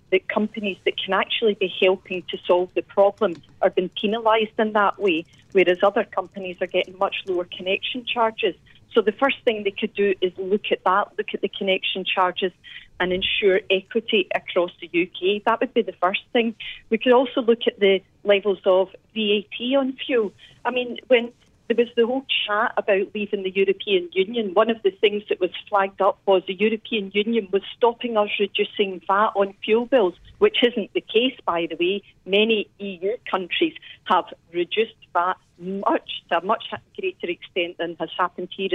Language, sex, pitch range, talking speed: English, female, 185-235 Hz, 185 wpm